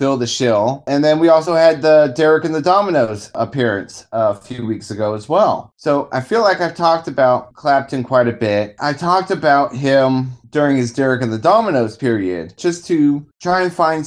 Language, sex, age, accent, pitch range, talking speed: English, male, 20-39, American, 110-145 Hz, 205 wpm